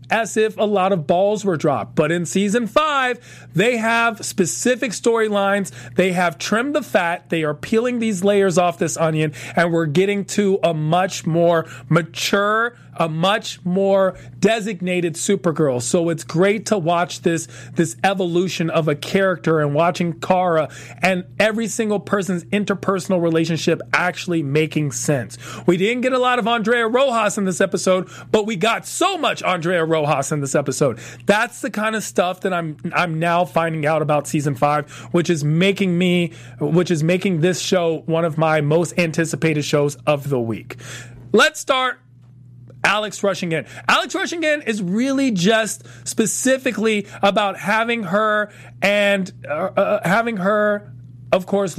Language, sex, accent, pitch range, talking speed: English, male, American, 160-210 Hz, 160 wpm